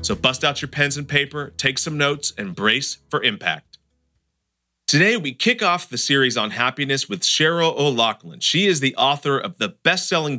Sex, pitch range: male, 115-155 Hz